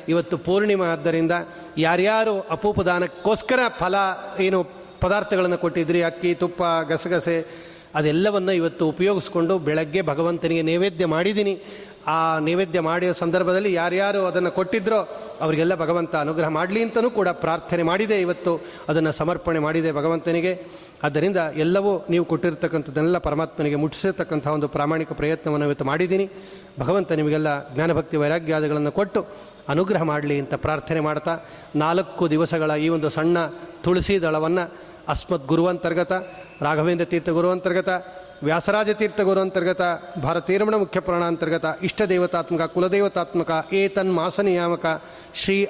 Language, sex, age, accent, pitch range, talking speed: Kannada, male, 30-49, native, 160-190 Hz, 110 wpm